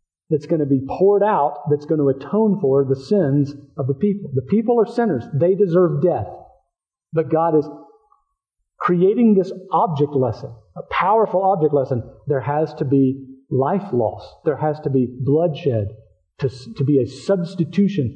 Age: 50-69